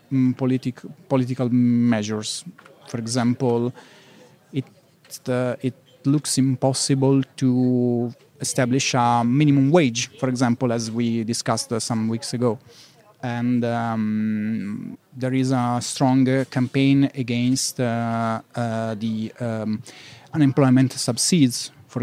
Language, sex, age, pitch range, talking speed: English, male, 30-49, 120-140 Hz, 105 wpm